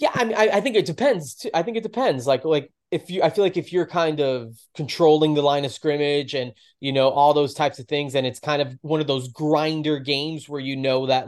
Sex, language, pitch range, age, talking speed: male, English, 125-150 Hz, 20-39, 265 wpm